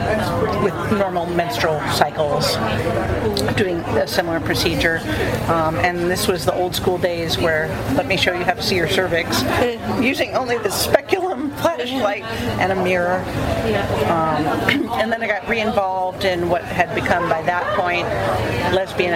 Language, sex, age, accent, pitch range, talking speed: English, female, 40-59, American, 155-190 Hz, 155 wpm